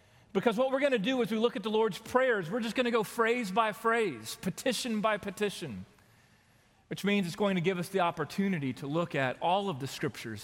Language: English